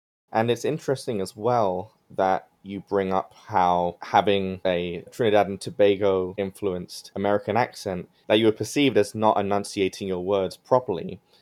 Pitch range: 90-115 Hz